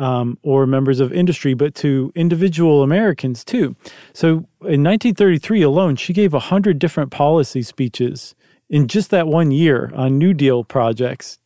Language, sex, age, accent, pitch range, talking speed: English, male, 40-59, American, 135-175 Hz, 150 wpm